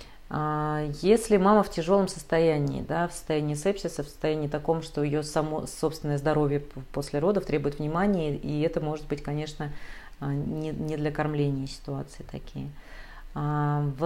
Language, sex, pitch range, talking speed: Russian, female, 145-170 Hz, 135 wpm